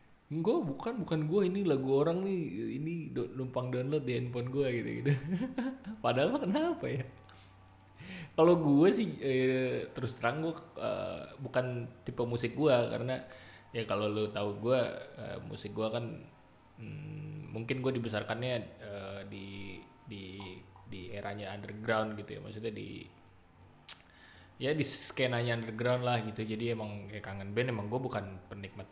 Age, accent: 20-39, native